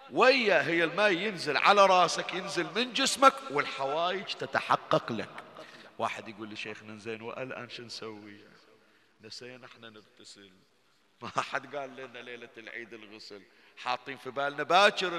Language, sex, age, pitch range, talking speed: Arabic, male, 50-69, 130-210 Hz, 130 wpm